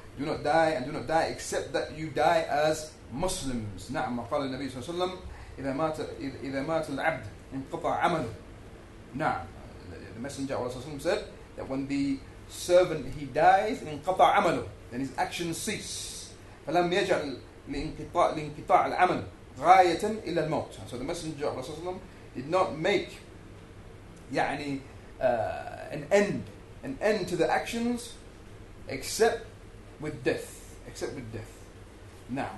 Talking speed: 120 wpm